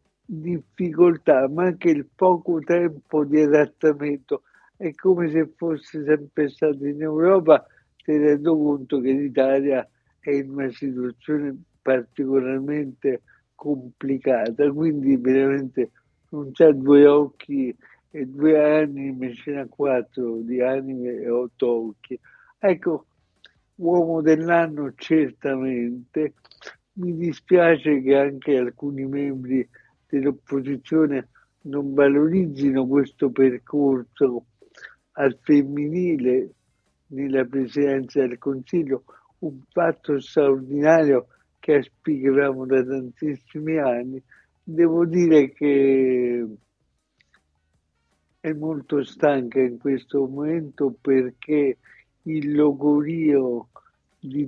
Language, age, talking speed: Italian, 60-79, 95 wpm